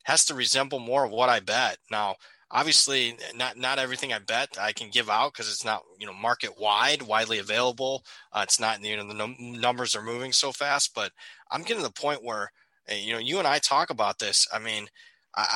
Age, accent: 20-39, American